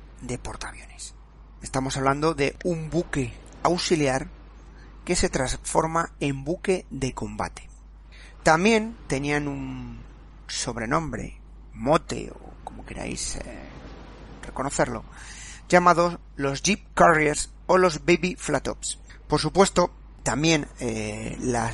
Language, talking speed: Spanish, 110 wpm